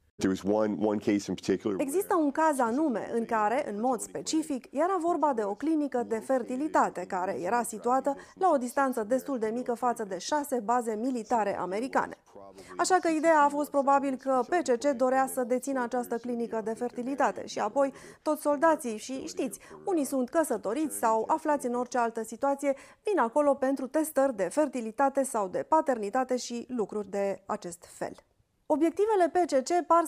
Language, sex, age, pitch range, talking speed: Romanian, female, 30-49, 225-295 Hz, 155 wpm